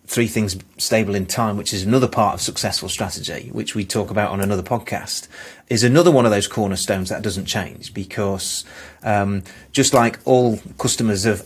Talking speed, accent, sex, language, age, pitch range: 185 wpm, British, male, English, 30-49, 100-115 Hz